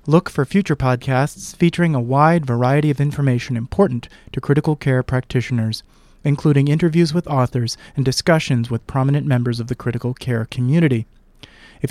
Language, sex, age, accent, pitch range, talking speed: English, male, 30-49, American, 125-155 Hz, 150 wpm